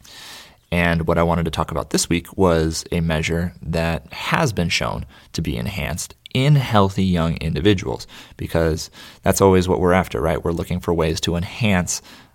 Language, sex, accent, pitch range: English, male, American, 85-105 Hz